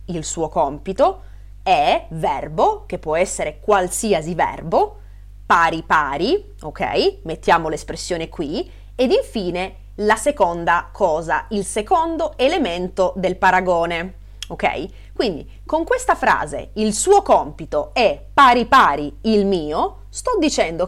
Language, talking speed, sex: Italian, 115 wpm, female